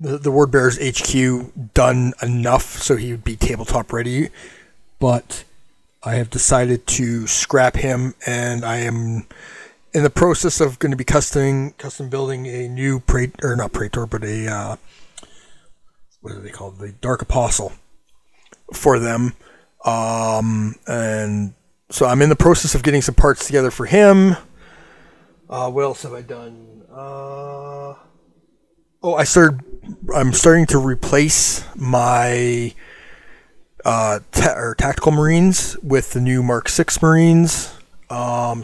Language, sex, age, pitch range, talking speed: English, male, 30-49, 115-140 Hz, 140 wpm